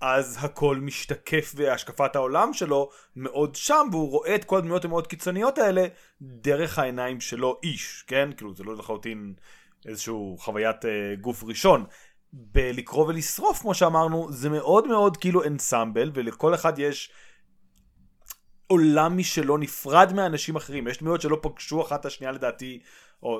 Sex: male